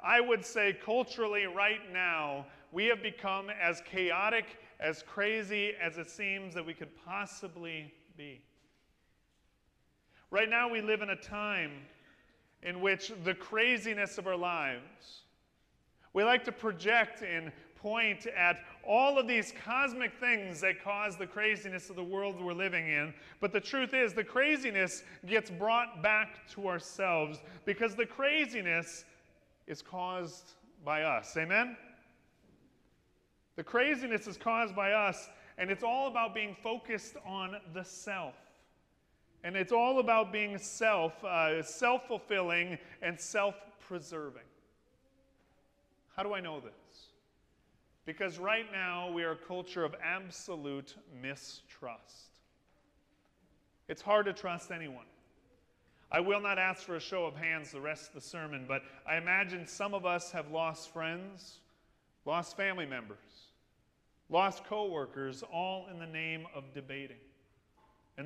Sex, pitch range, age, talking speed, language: male, 165-215 Hz, 40-59, 140 wpm, English